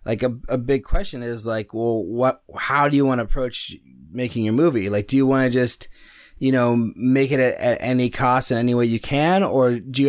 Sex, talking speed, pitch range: male, 240 wpm, 105-130 Hz